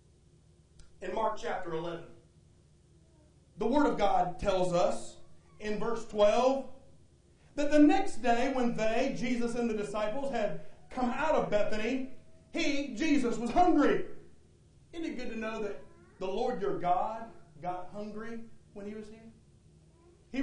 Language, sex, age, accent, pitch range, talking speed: English, male, 40-59, American, 220-310 Hz, 145 wpm